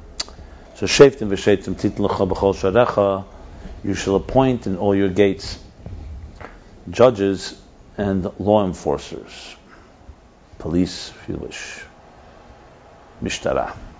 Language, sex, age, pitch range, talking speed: English, male, 50-69, 90-105 Hz, 100 wpm